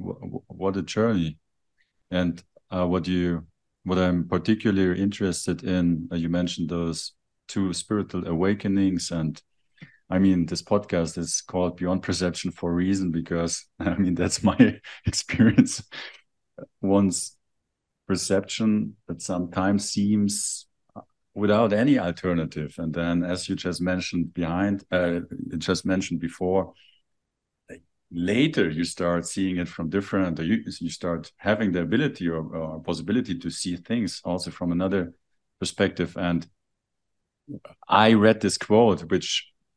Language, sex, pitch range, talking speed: German, male, 85-100 Hz, 125 wpm